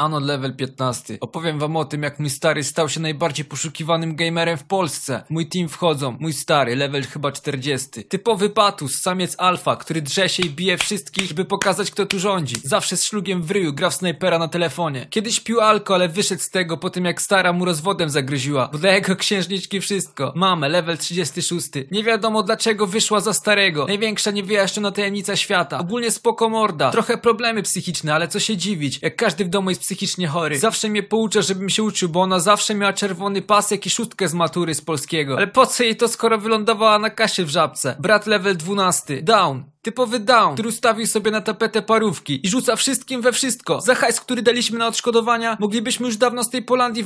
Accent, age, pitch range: native, 20-39, 170-225 Hz